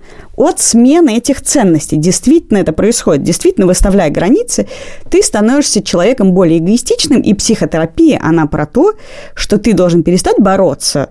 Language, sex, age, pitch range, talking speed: Russian, female, 30-49, 160-230 Hz, 135 wpm